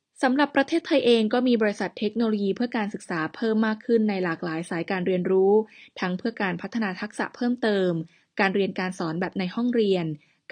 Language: Thai